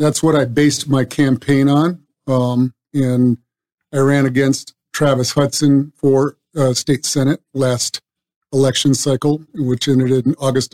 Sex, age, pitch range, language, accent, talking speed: male, 50-69, 135-155 Hz, English, American, 140 wpm